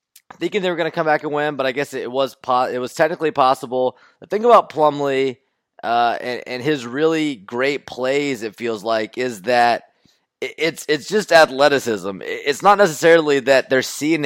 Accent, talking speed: American, 190 wpm